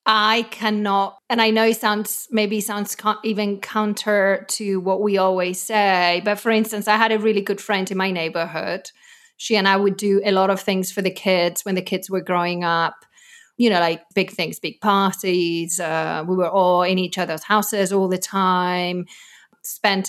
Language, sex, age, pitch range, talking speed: English, female, 30-49, 190-225 Hz, 200 wpm